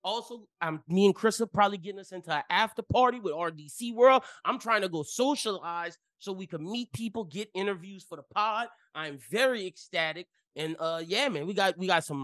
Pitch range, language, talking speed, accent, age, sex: 165-215 Hz, English, 210 wpm, American, 20-39, male